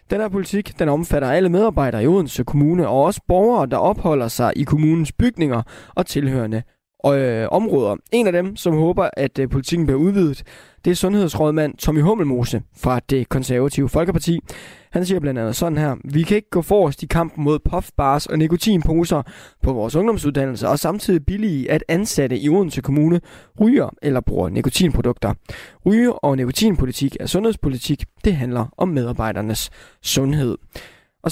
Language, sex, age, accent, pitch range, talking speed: Danish, male, 20-39, native, 135-180 Hz, 155 wpm